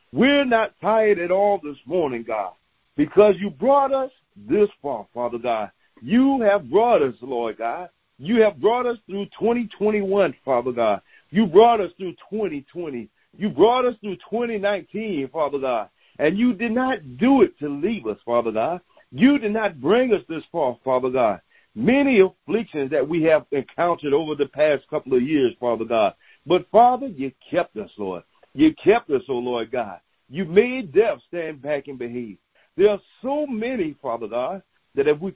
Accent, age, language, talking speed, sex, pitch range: American, 50-69, English, 180 wpm, male, 150-235 Hz